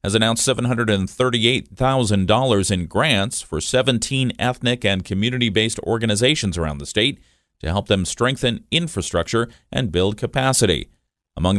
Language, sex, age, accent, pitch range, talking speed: English, male, 40-59, American, 95-120 Hz, 120 wpm